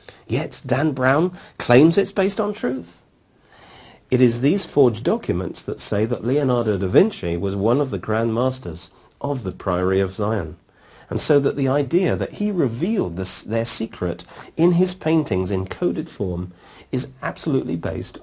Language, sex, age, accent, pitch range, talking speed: English, male, 50-69, British, 95-150 Hz, 160 wpm